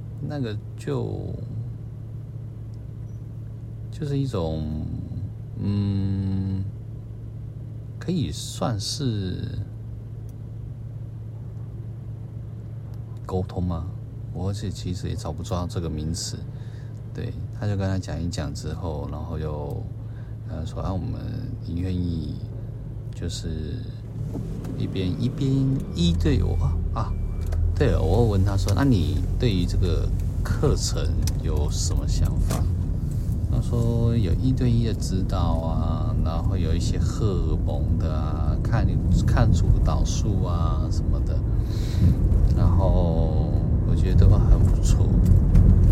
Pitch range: 90-115 Hz